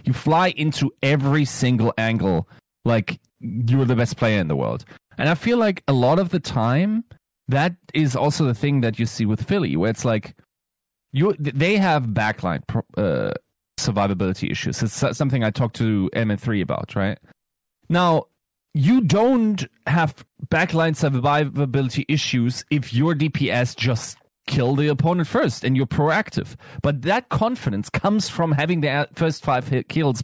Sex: male